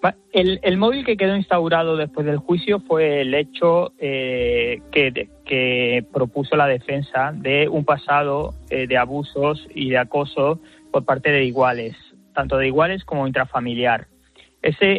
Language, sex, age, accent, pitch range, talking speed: Spanish, male, 20-39, Spanish, 130-150 Hz, 150 wpm